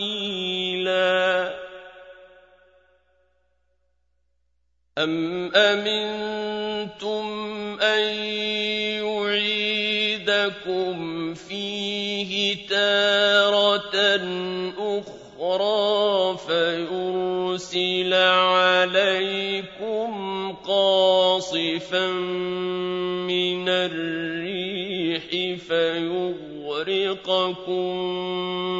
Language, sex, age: Arabic, male, 40-59